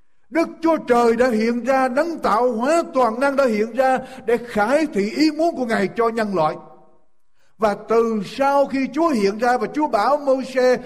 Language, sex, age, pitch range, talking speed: Vietnamese, male, 60-79, 175-275 Hz, 195 wpm